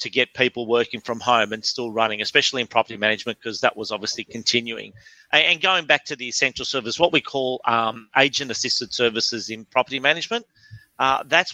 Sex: male